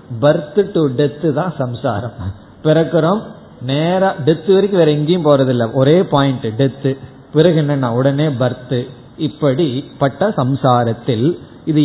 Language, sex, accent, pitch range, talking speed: Tamil, male, native, 130-160 Hz, 80 wpm